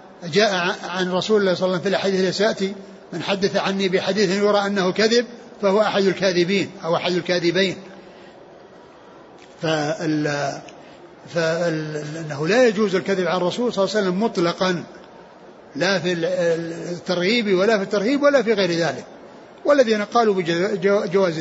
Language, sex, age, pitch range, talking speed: Arabic, male, 60-79, 180-215 Hz, 145 wpm